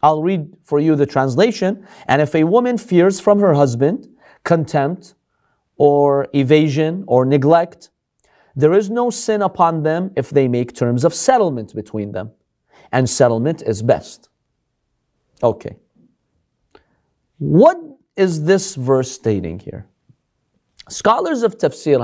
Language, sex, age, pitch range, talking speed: English, male, 40-59, 135-195 Hz, 130 wpm